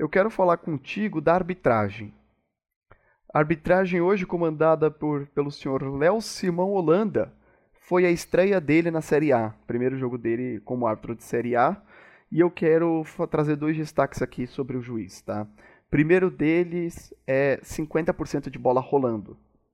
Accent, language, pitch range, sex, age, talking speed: Brazilian, Portuguese, 115-160 Hz, male, 20-39, 145 wpm